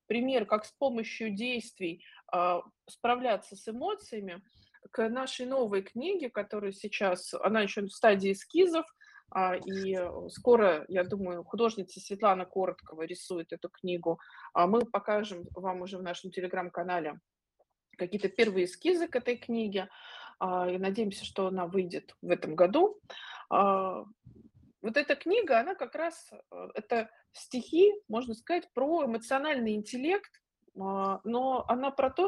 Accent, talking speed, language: native, 125 wpm, Russian